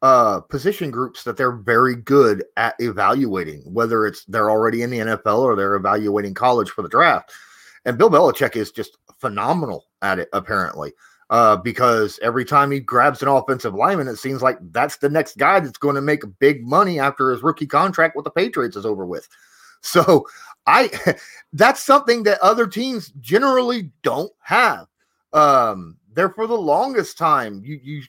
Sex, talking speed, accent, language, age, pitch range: male, 175 wpm, American, English, 30-49, 130-200 Hz